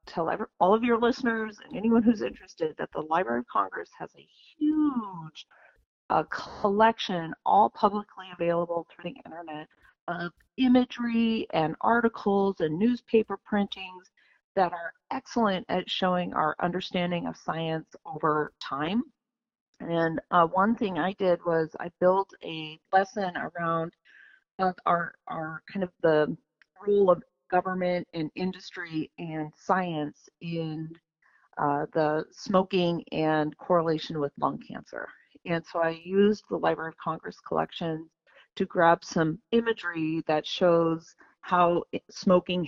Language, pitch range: English, 165-205 Hz